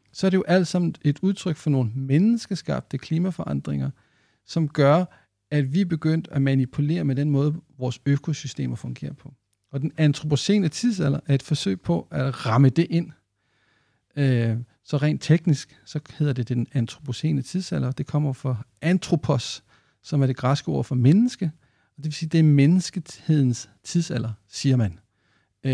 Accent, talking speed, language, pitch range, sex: native, 165 wpm, Danish, 125-155 Hz, male